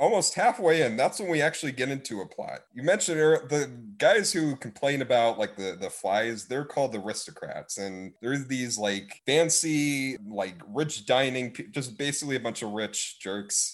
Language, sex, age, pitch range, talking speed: English, male, 30-49, 120-170 Hz, 180 wpm